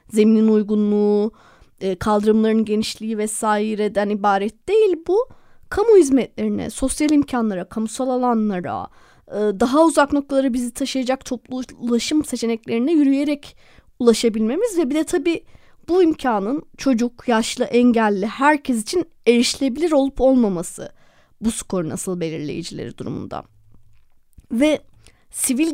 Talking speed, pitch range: 105 wpm, 215-290 Hz